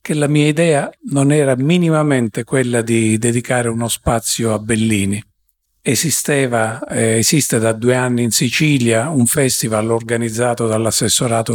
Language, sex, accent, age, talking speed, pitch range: Italian, male, native, 50-69, 135 wpm, 115-135 Hz